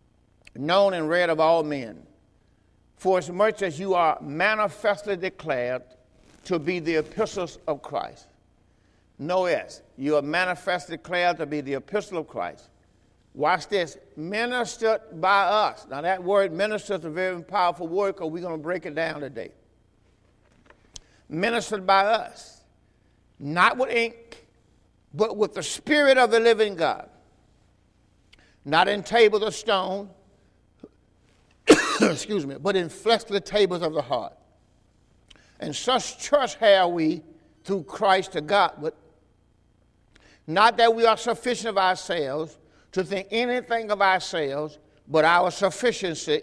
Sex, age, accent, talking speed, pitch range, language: male, 60-79, American, 140 wpm, 120-200 Hz, English